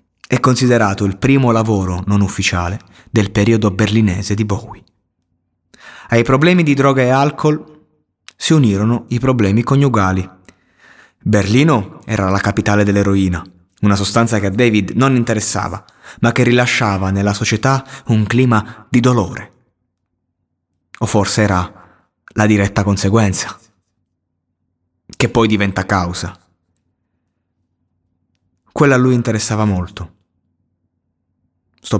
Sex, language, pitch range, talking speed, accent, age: male, Italian, 90-115 Hz, 115 wpm, native, 30-49